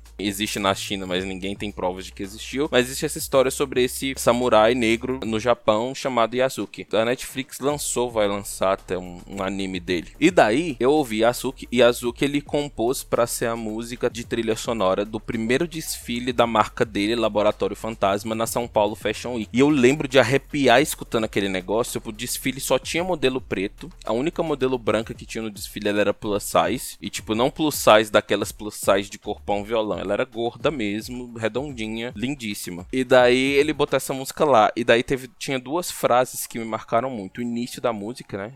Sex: male